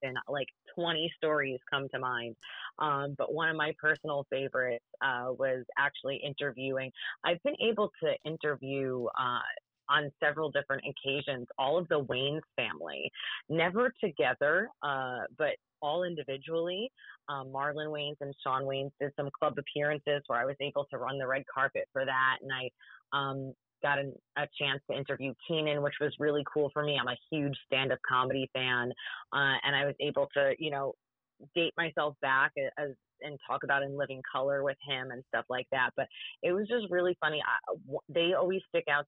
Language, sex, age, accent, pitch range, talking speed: English, female, 30-49, American, 135-150 Hz, 180 wpm